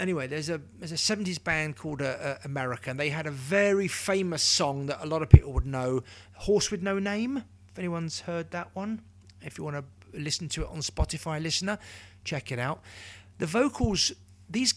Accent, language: British, English